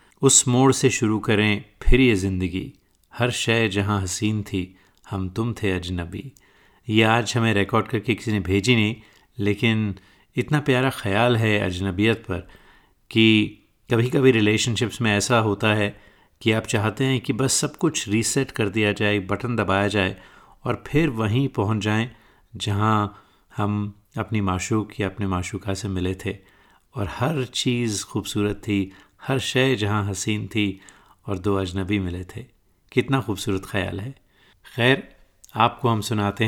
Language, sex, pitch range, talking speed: Hindi, male, 100-120 Hz, 150 wpm